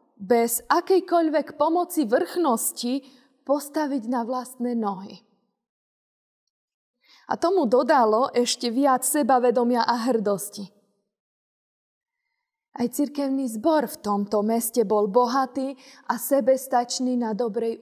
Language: Slovak